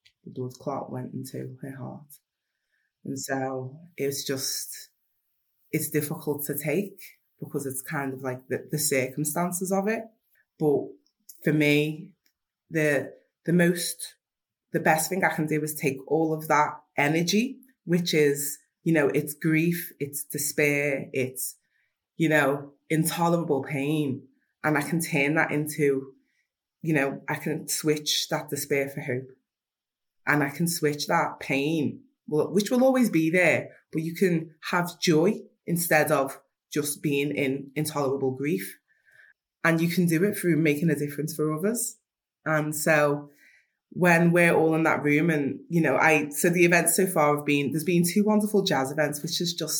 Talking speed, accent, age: 160 wpm, British, 20-39